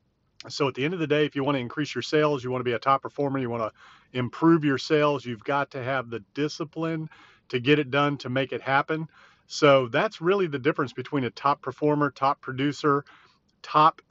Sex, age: male, 40-59